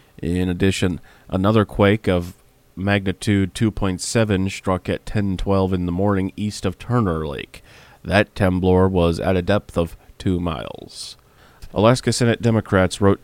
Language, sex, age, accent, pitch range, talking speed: English, male, 30-49, American, 90-105 Hz, 135 wpm